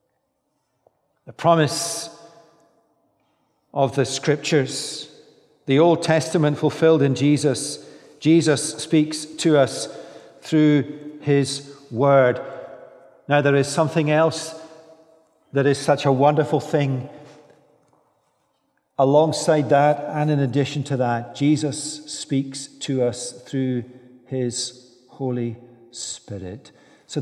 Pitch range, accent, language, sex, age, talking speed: 135-160 Hz, British, English, male, 50-69, 100 wpm